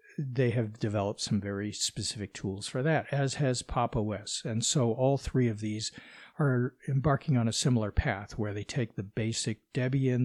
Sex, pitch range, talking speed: male, 105-135 Hz, 180 wpm